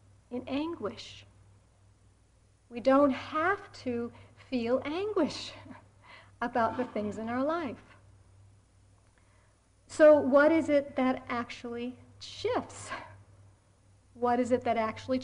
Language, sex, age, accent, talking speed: English, female, 50-69, American, 100 wpm